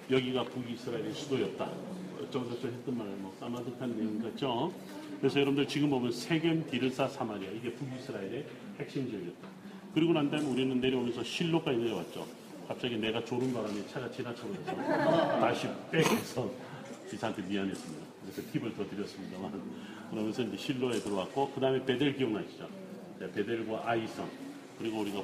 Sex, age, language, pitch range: male, 40-59, Korean, 110-130 Hz